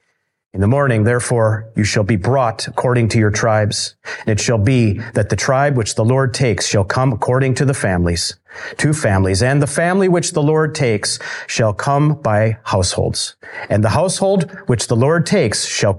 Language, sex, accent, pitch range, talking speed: English, male, American, 110-150 Hz, 190 wpm